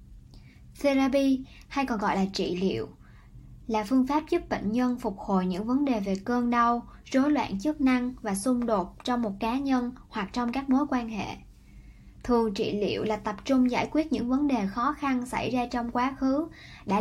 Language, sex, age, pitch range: Vietnamese, male, 10-29, 220-270 Hz